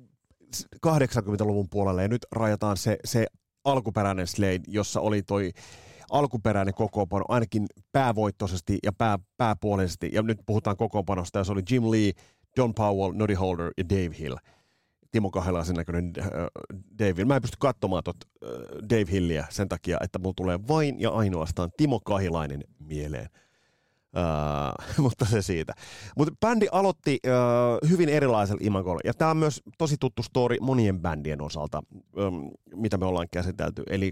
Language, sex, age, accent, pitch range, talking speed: Finnish, male, 30-49, native, 90-115 Hz, 155 wpm